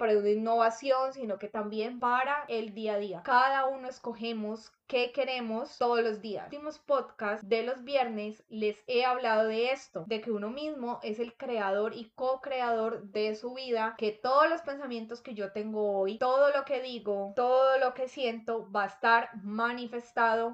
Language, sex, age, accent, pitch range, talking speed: Spanish, female, 10-29, Colombian, 215-255 Hz, 180 wpm